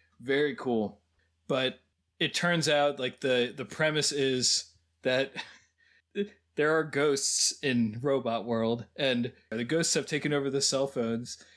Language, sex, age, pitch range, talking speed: English, male, 20-39, 125-155 Hz, 140 wpm